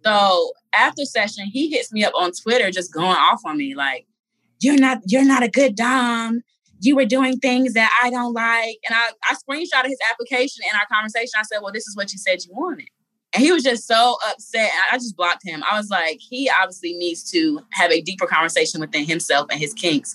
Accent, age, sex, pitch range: American, 20-39, female, 170-240 Hz